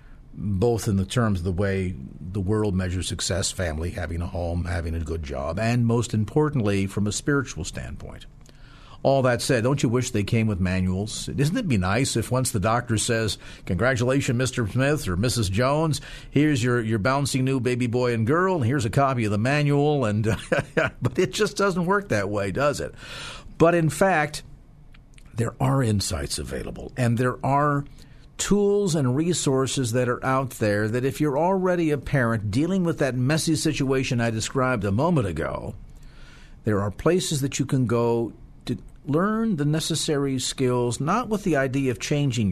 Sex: male